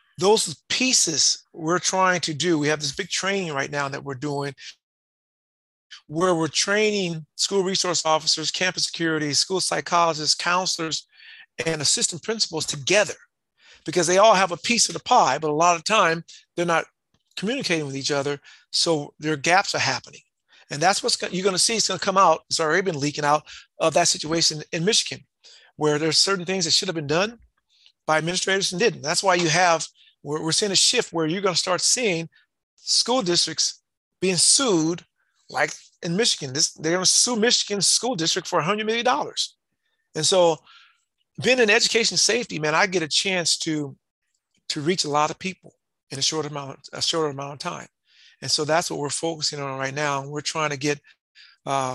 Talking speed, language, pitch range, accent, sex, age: 190 wpm, English, 150-190 Hz, American, male, 50-69